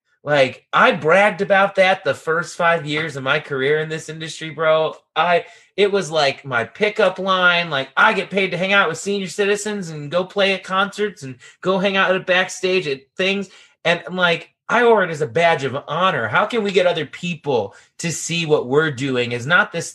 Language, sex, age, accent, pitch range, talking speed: English, male, 30-49, American, 130-180 Hz, 215 wpm